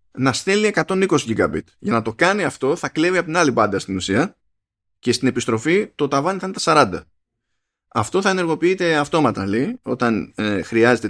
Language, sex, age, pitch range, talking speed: Greek, male, 20-39, 105-145 Hz, 180 wpm